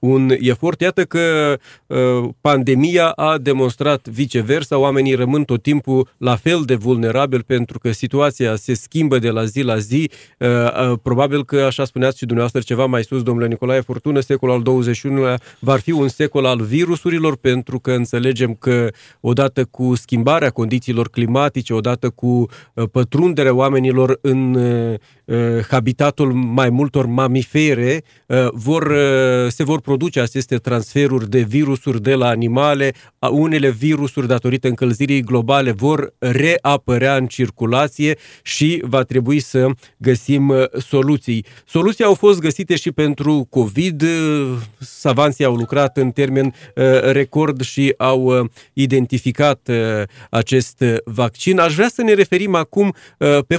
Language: Romanian